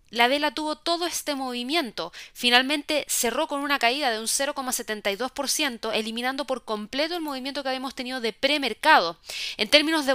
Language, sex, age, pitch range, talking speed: Spanish, female, 20-39, 220-285 Hz, 160 wpm